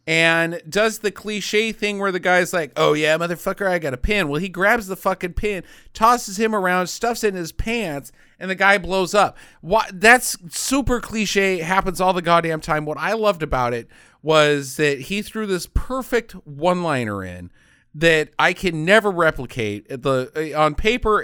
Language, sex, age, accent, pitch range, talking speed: English, male, 40-59, American, 130-195 Hz, 185 wpm